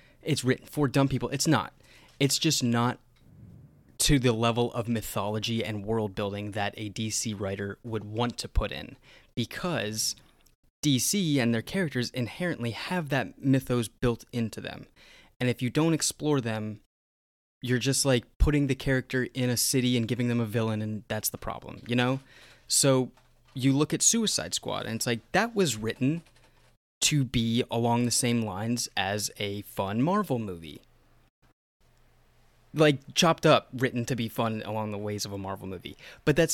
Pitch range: 110-135 Hz